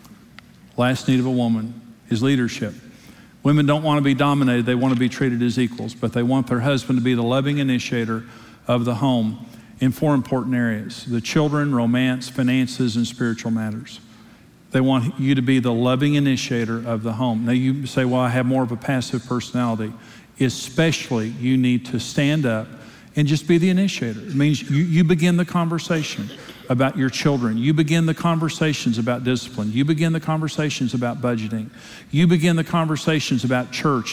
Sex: male